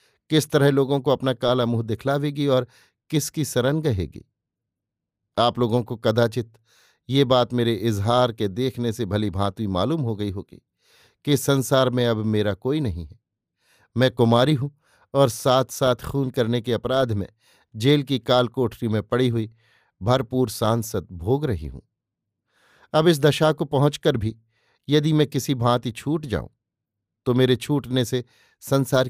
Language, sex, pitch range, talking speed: Hindi, male, 115-140 Hz, 160 wpm